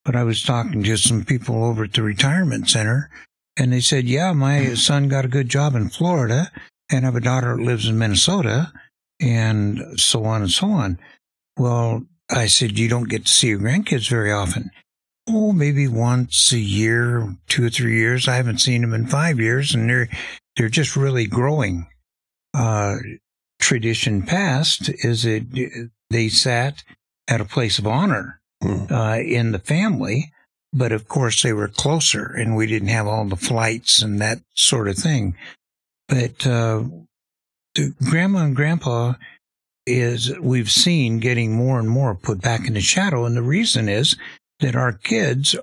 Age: 60-79